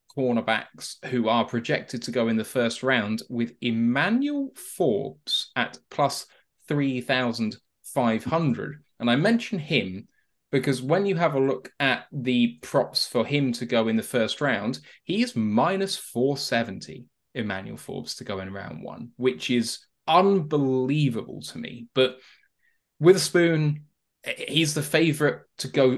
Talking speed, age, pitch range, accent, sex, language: 150 wpm, 10-29, 120-150 Hz, British, male, English